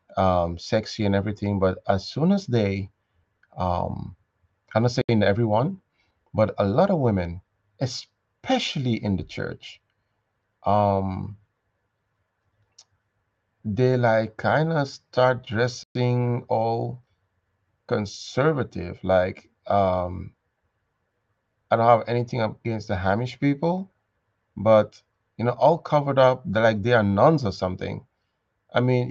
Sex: male